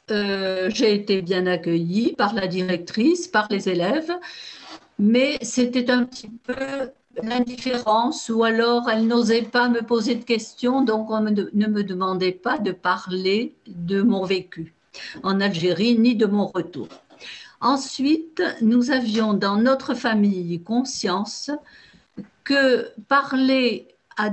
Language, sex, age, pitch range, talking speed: French, female, 50-69, 200-250 Hz, 130 wpm